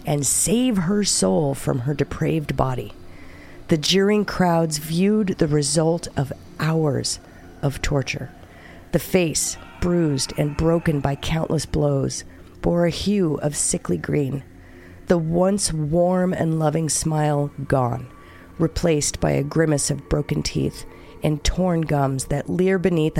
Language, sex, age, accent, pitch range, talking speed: English, female, 40-59, American, 135-175 Hz, 135 wpm